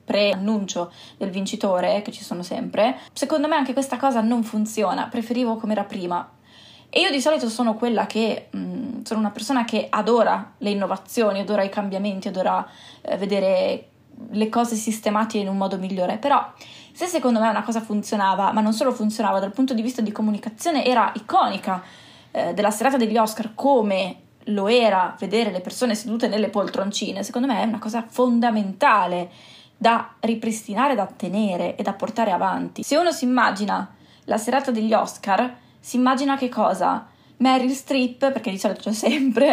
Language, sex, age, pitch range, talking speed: Italian, female, 20-39, 205-250 Hz, 170 wpm